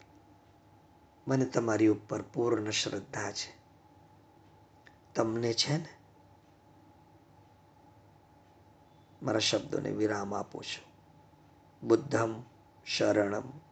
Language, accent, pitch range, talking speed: Gujarati, native, 105-145 Hz, 60 wpm